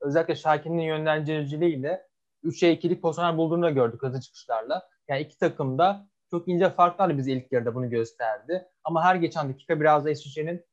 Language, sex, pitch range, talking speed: Turkish, male, 145-175 Hz, 155 wpm